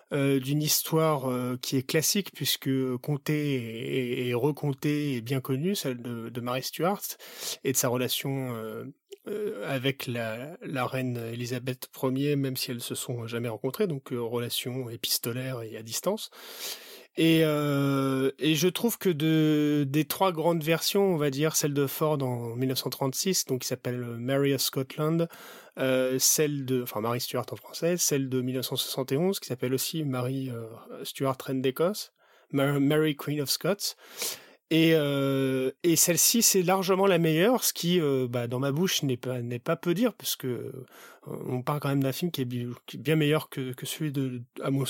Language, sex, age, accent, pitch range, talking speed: French, male, 30-49, French, 130-155 Hz, 190 wpm